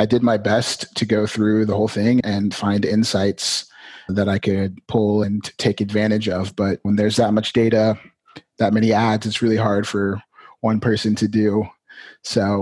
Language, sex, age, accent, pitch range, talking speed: English, male, 30-49, American, 100-110 Hz, 185 wpm